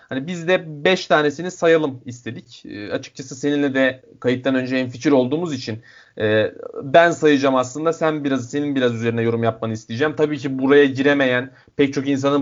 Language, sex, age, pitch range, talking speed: Turkish, male, 30-49, 125-165 Hz, 175 wpm